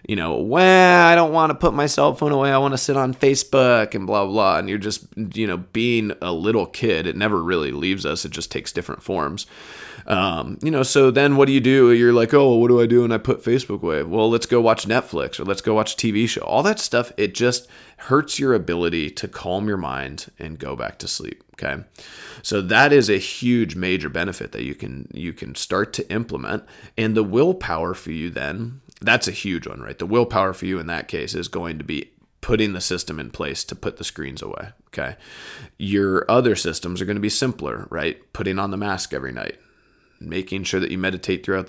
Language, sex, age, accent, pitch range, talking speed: English, male, 30-49, American, 90-120 Hz, 225 wpm